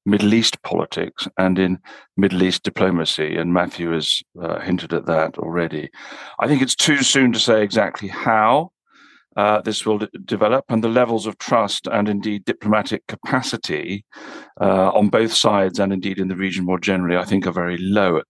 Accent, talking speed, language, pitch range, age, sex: British, 180 wpm, English, 95-115 Hz, 50-69, male